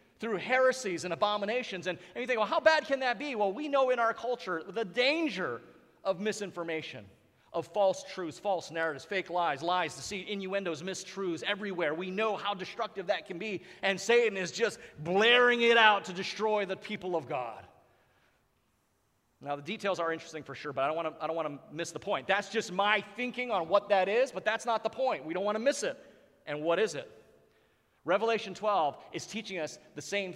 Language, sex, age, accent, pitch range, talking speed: English, male, 40-59, American, 150-210 Hz, 200 wpm